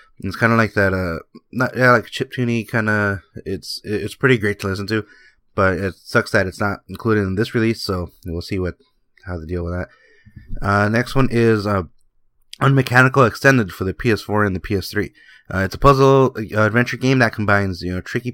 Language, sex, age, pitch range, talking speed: English, male, 20-39, 95-115 Hz, 205 wpm